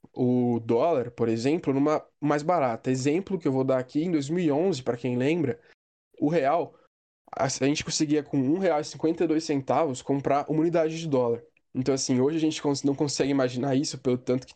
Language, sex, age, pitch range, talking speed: Portuguese, male, 10-29, 130-155 Hz, 175 wpm